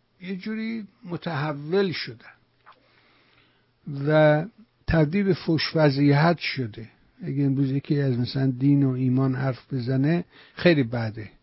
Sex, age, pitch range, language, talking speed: male, 60-79, 130-160 Hz, Persian, 110 wpm